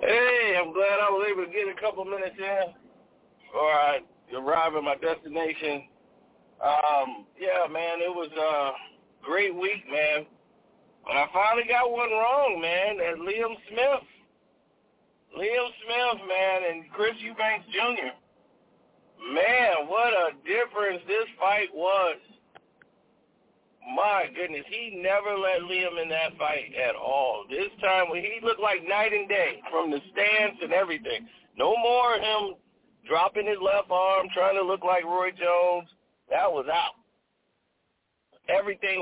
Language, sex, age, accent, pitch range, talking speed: English, male, 50-69, American, 180-220 Hz, 145 wpm